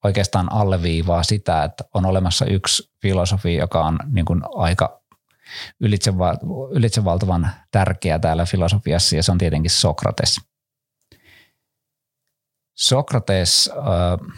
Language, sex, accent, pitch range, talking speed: Finnish, male, native, 85-110 Hz, 100 wpm